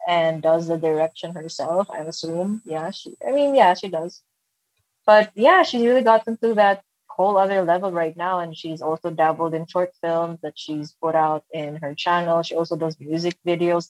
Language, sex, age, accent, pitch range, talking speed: English, female, 20-39, Filipino, 160-180 Hz, 195 wpm